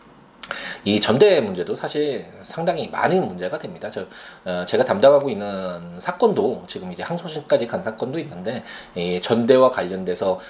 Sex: male